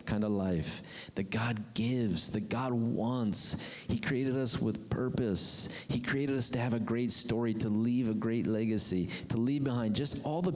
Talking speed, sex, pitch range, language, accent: 190 wpm, male, 110-145 Hz, English, American